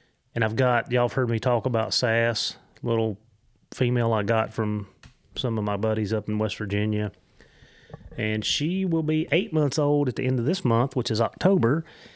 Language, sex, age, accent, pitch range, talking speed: English, male, 30-49, American, 110-130 Hz, 190 wpm